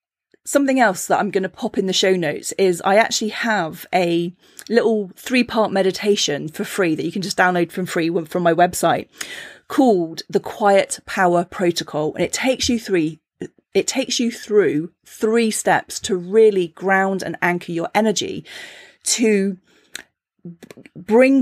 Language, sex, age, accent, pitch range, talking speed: English, female, 30-49, British, 175-225 Hz, 160 wpm